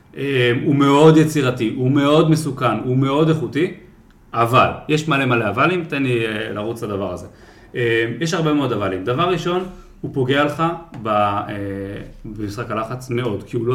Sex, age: male, 30-49